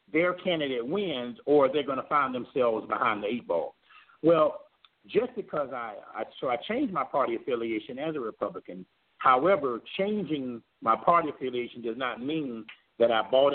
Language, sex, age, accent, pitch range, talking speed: English, male, 50-69, American, 115-170 Hz, 165 wpm